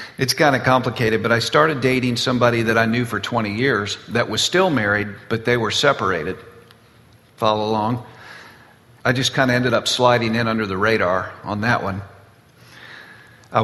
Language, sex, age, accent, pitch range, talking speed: English, male, 50-69, American, 100-120 Hz, 175 wpm